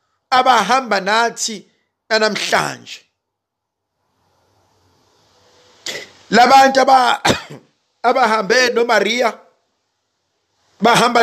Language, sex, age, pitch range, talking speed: English, male, 50-69, 170-265 Hz, 55 wpm